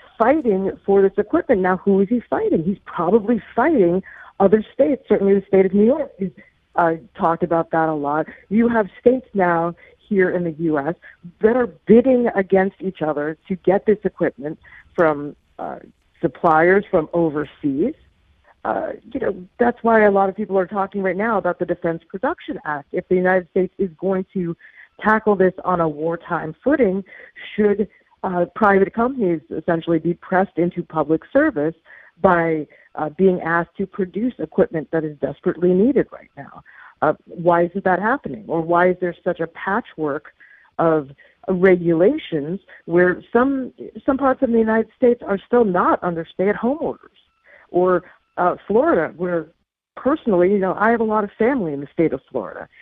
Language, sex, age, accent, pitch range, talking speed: English, female, 50-69, American, 170-215 Hz, 170 wpm